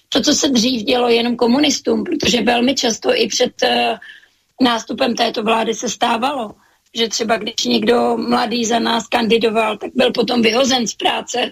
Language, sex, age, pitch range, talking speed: Slovak, female, 30-49, 230-245 Hz, 160 wpm